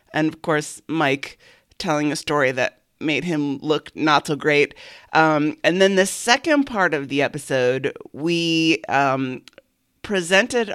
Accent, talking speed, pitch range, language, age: American, 145 wpm, 145-190 Hz, English, 30-49